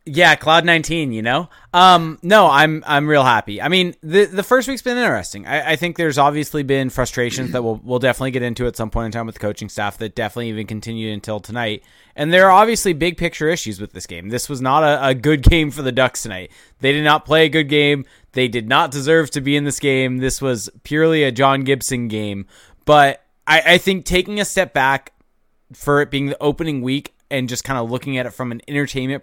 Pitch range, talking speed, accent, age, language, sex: 115-150 Hz, 235 wpm, American, 20-39, English, male